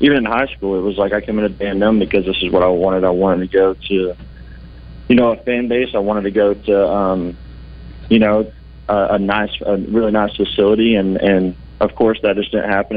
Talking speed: 230 wpm